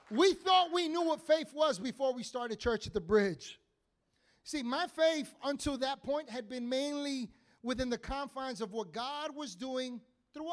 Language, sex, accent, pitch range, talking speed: English, male, American, 210-285 Hz, 180 wpm